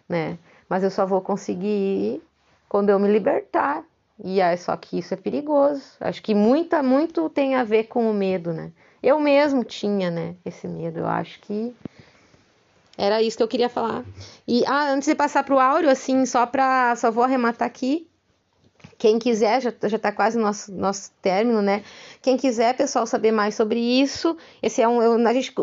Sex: female